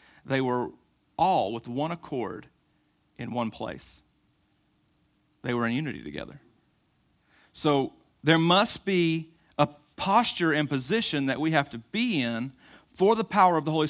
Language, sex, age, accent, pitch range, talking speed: English, male, 40-59, American, 135-180 Hz, 145 wpm